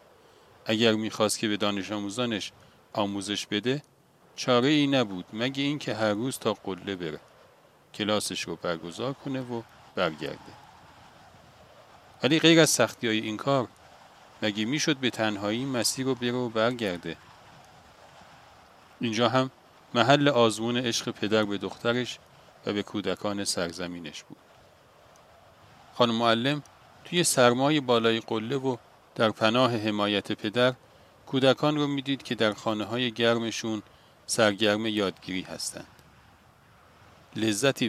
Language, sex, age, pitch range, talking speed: Persian, male, 50-69, 100-125 Hz, 115 wpm